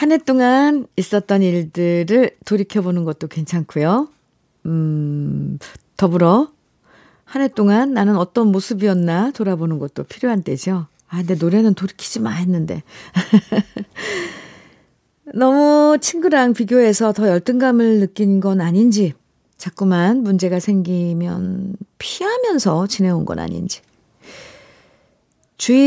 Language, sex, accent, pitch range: Korean, female, native, 165-220 Hz